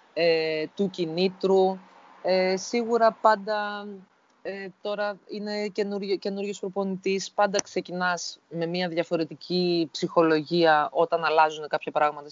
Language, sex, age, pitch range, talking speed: Greek, female, 20-39, 155-200 Hz, 90 wpm